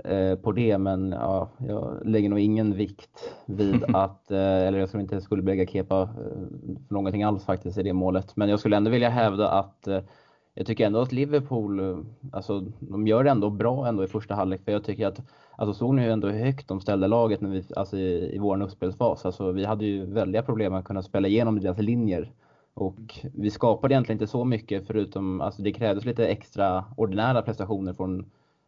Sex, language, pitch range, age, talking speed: male, Swedish, 95-115 Hz, 20-39, 200 wpm